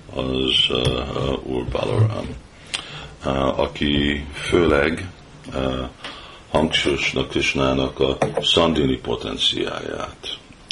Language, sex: Hungarian, male